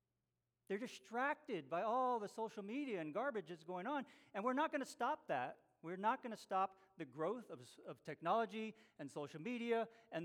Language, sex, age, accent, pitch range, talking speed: English, male, 40-59, American, 130-195 Hz, 195 wpm